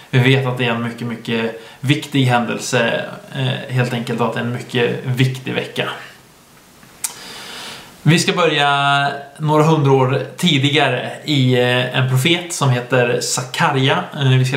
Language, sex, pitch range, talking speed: Swedish, male, 120-140 Hz, 140 wpm